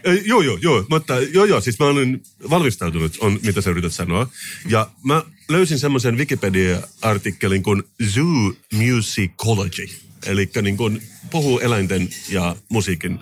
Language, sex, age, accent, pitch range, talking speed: Finnish, male, 30-49, native, 95-130 Hz, 135 wpm